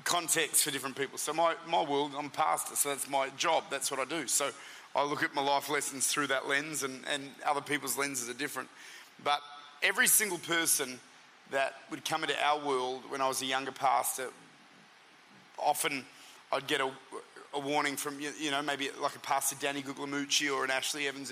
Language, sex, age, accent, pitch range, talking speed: English, male, 30-49, Australian, 135-150 Hz, 200 wpm